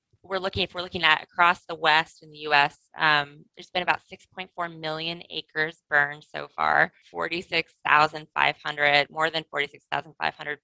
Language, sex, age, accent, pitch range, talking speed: English, female, 20-39, American, 155-185 Hz, 145 wpm